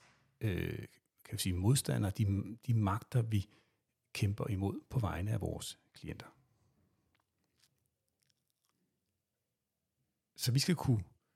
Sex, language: male, Danish